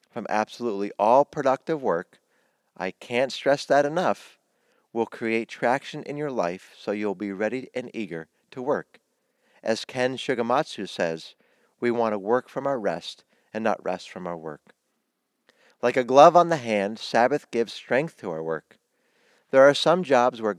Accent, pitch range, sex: American, 105-135 Hz, male